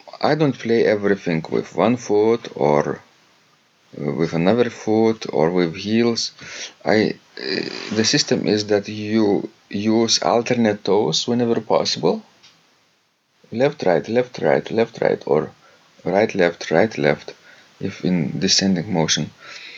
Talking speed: 125 wpm